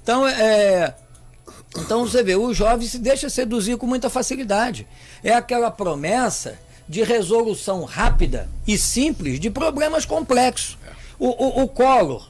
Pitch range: 180-235 Hz